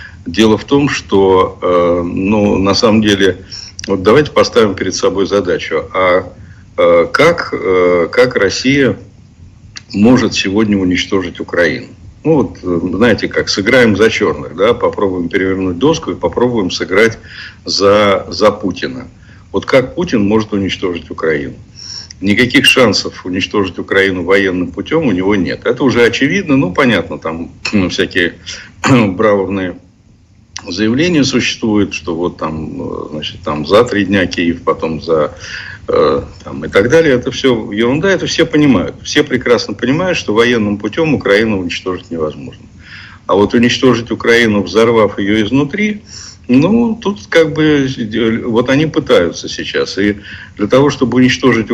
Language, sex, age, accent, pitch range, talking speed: Russian, male, 60-79, native, 95-135 Hz, 140 wpm